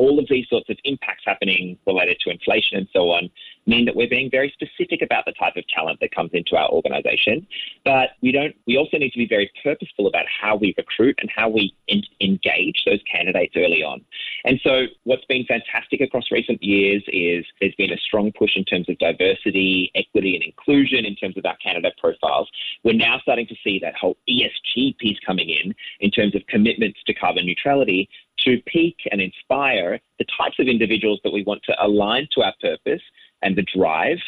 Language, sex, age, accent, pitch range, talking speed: English, male, 30-49, Australian, 100-165 Hz, 205 wpm